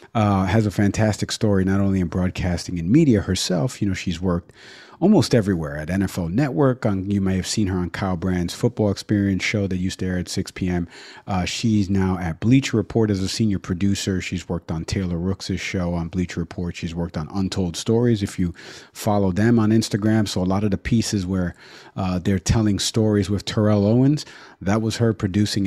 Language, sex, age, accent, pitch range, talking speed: English, male, 40-59, American, 95-115 Hz, 200 wpm